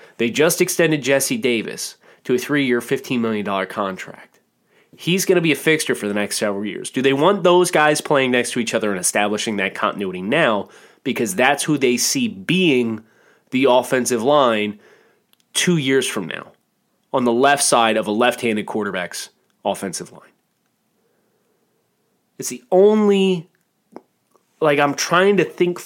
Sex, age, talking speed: male, 30-49, 160 wpm